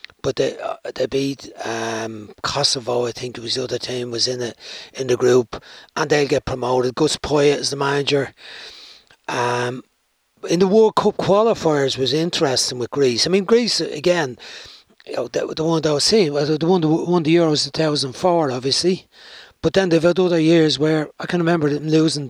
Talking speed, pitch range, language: 200 wpm, 135-165 Hz, English